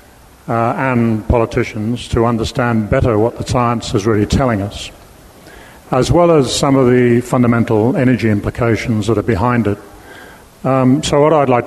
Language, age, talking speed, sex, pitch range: English, 50-69, 160 wpm, male, 115-130 Hz